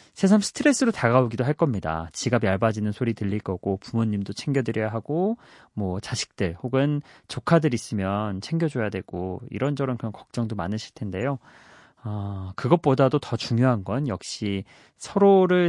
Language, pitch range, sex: Korean, 105-155 Hz, male